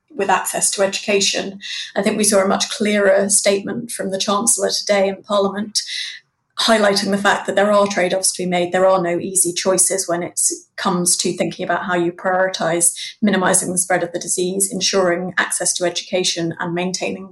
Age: 20-39